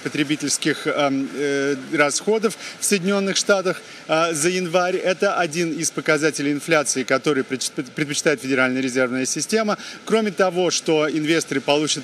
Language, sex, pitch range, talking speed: Russian, male, 140-175 Hz, 110 wpm